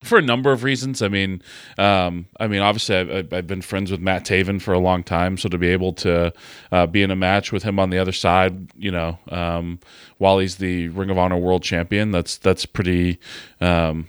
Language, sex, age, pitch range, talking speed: English, male, 30-49, 90-115 Hz, 225 wpm